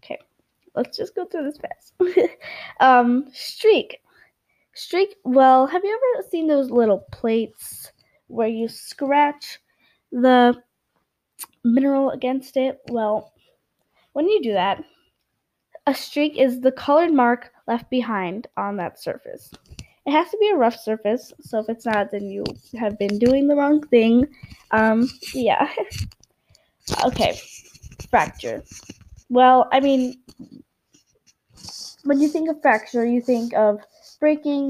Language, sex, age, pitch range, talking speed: English, female, 10-29, 240-315 Hz, 130 wpm